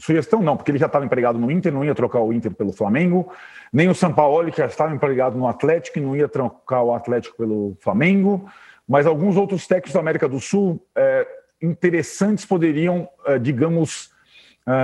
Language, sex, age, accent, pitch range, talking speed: Portuguese, male, 40-59, Brazilian, 135-185 Hz, 180 wpm